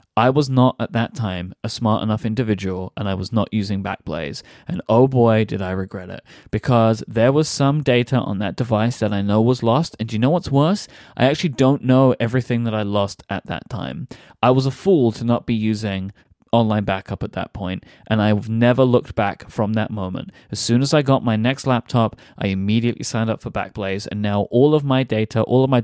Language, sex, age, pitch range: English, male, 20-39, 110-145 Hz